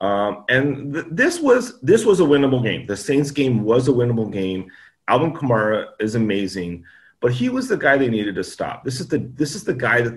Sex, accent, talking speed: male, American, 225 wpm